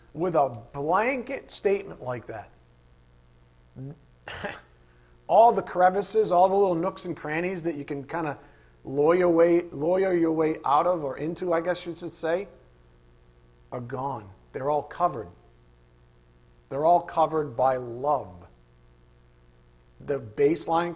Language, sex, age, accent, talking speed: English, male, 50-69, American, 125 wpm